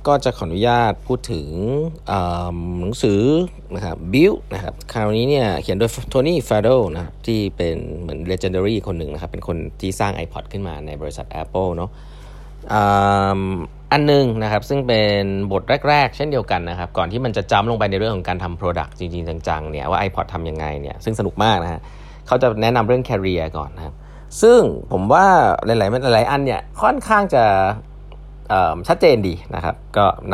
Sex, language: male, Thai